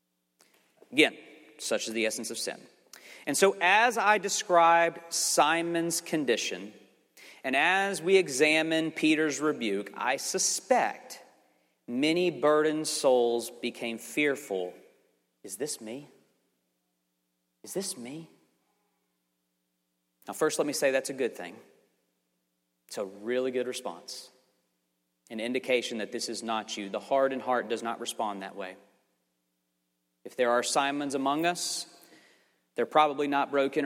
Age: 40-59